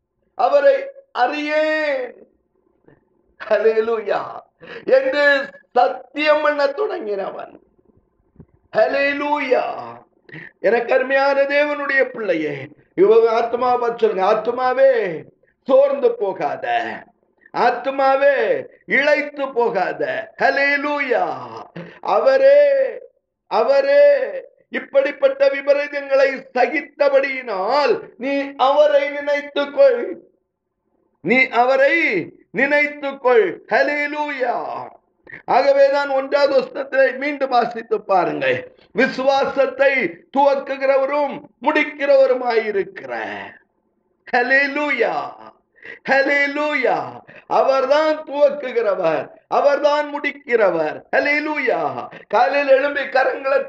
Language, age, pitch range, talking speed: Tamil, 50-69, 265-295 Hz, 45 wpm